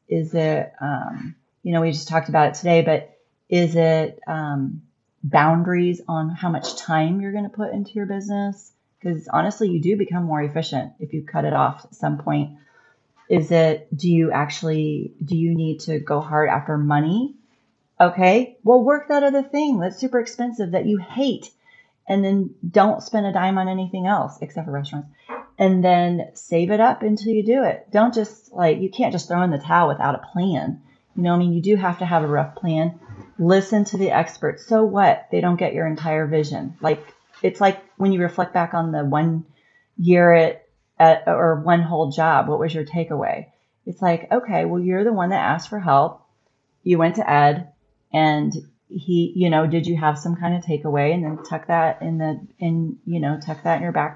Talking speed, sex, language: 205 wpm, female, English